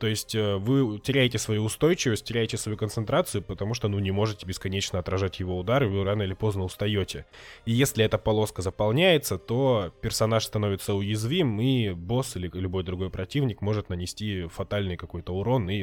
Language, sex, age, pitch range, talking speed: Russian, male, 20-39, 95-125 Hz, 170 wpm